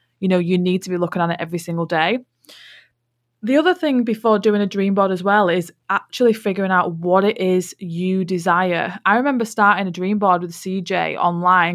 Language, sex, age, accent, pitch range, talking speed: English, female, 20-39, British, 170-195 Hz, 205 wpm